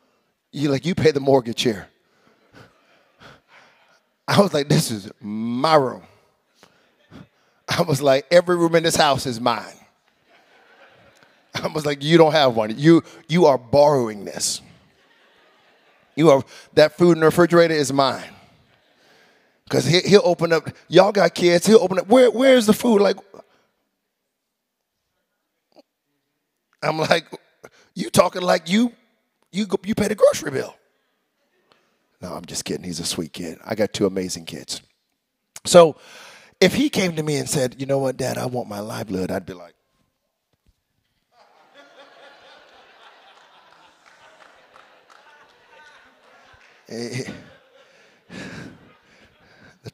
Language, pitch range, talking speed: English, 120-175 Hz, 130 wpm